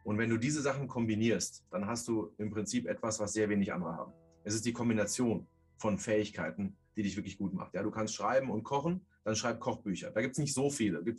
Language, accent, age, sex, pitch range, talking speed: German, German, 30-49, male, 105-125 Hz, 240 wpm